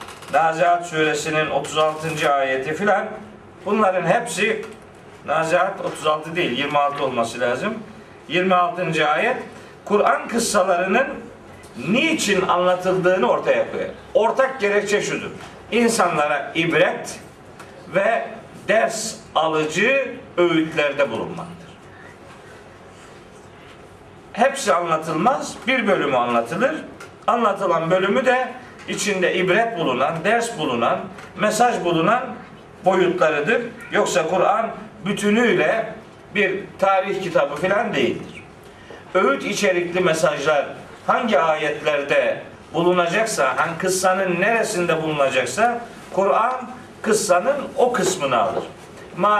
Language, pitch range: Turkish, 160-215 Hz